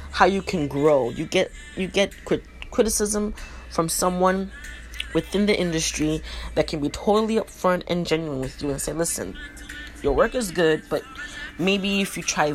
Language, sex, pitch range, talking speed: English, female, 145-185 Hz, 165 wpm